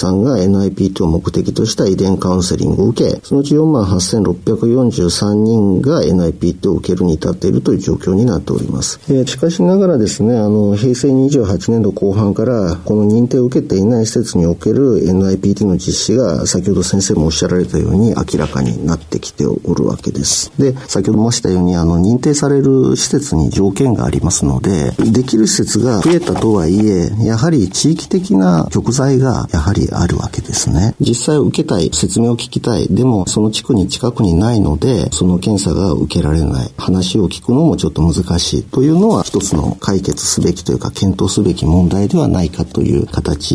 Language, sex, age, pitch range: Japanese, male, 50-69, 90-125 Hz